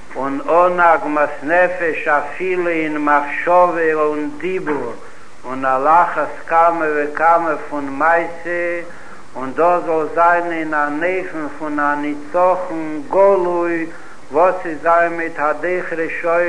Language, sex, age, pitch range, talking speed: Hebrew, male, 60-79, 150-175 Hz, 75 wpm